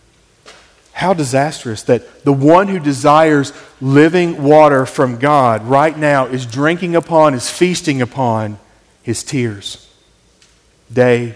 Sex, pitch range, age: male, 120-160 Hz, 40-59